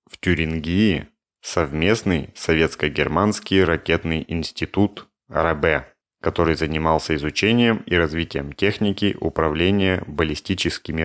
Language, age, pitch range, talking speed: Russian, 30-49, 80-95 Hz, 80 wpm